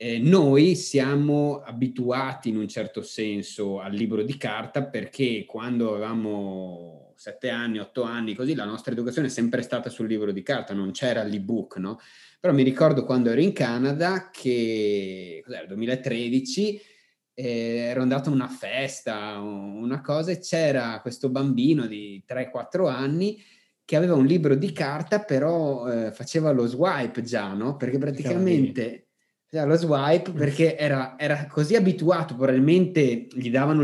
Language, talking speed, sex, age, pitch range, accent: Italian, 155 wpm, male, 30-49, 115-150 Hz, native